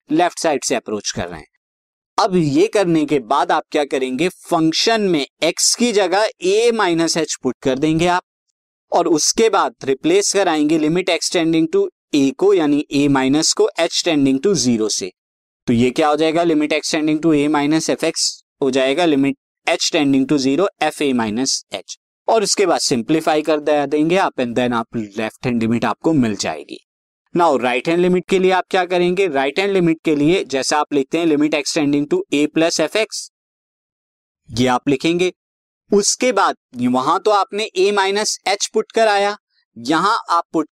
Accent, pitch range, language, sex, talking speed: native, 140-205 Hz, Hindi, male, 125 wpm